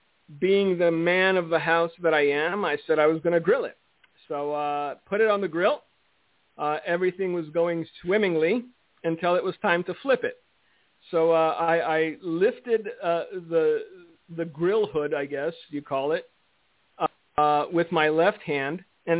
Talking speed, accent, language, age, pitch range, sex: 180 wpm, American, English, 50-69, 165-200 Hz, male